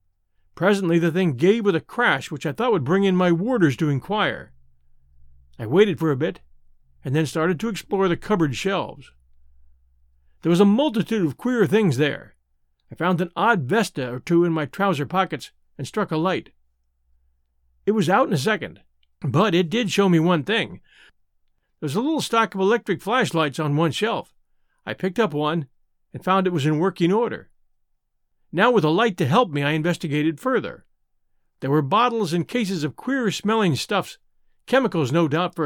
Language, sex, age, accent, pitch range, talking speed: English, male, 50-69, American, 135-205 Hz, 185 wpm